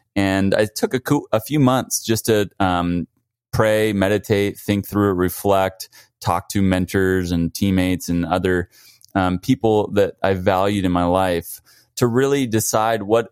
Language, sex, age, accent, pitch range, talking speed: English, male, 20-39, American, 90-115 Hz, 160 wpm